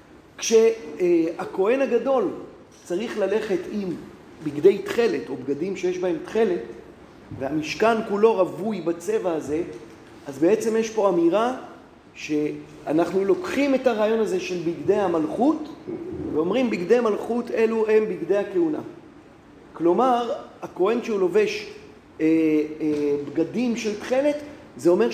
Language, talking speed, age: Hebrew, 115 wpm, 40-59